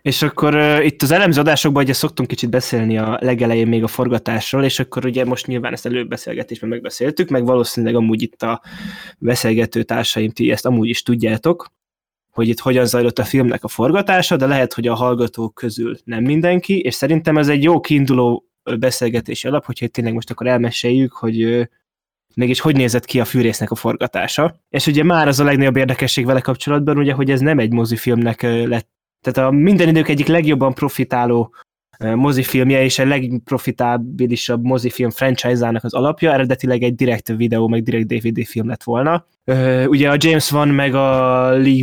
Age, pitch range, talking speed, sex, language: 20-39, 120-145 Hz, 175 wpm, male, Hungarian